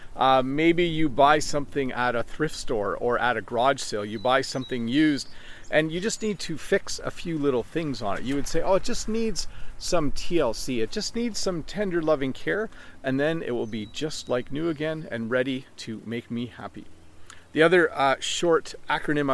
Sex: male